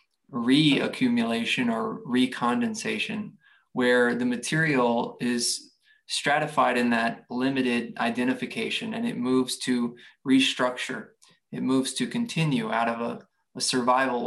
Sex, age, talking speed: male, 20-39, 110 wpm